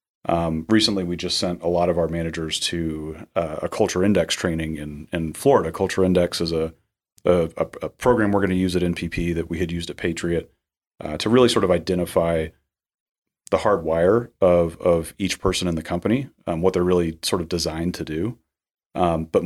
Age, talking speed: 30-49, 200 wpm